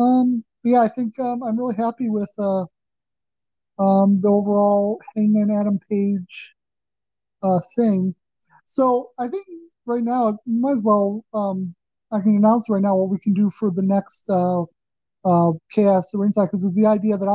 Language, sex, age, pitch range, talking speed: English, male, 20-39, 185-215 Hz, 175 wpm